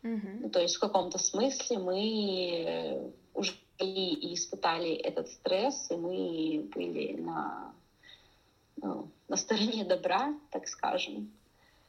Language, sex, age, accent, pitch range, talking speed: Russian, female, 20-39, native, 160-190 Hz, 105 wpm